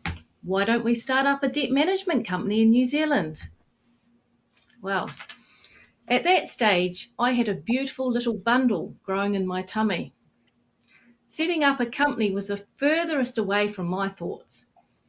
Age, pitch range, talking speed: 40-59, 185-255 Hz, 145 wpm